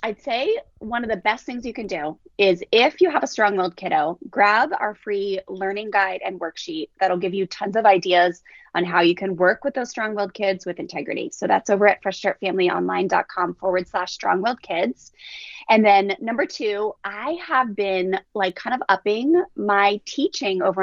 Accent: American